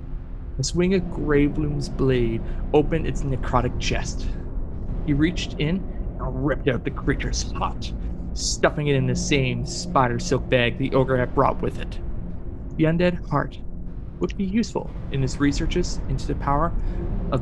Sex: male